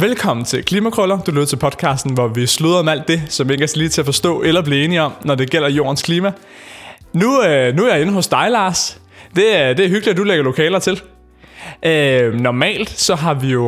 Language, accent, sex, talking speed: Danish, native, male, 235 wpm